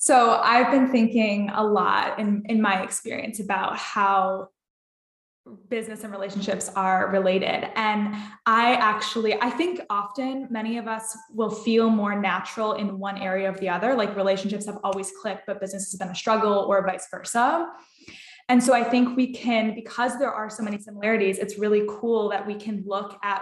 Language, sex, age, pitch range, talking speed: English, female, 10-29, 200-230 Hz, 180 wpm